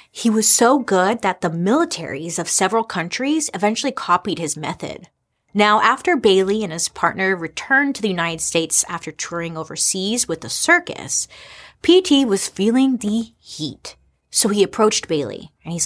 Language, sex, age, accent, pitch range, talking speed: English, female, 30-49, American, 175-250 Hz, 160 wpm